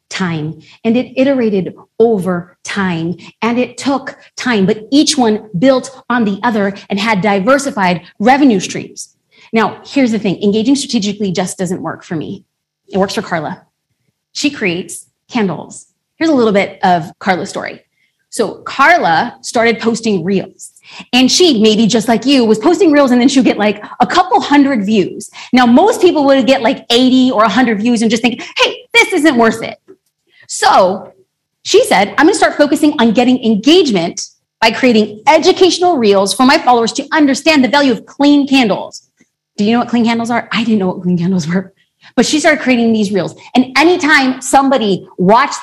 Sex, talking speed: female, 180 wpm